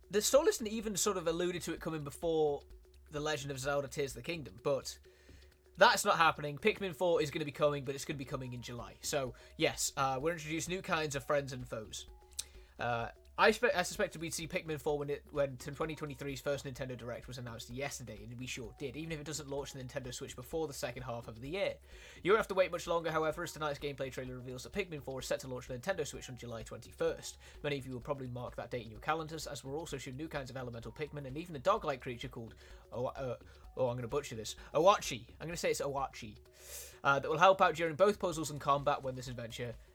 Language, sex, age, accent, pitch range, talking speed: Italian, male, 20-39, British, 125-170 Hz, 245 wpm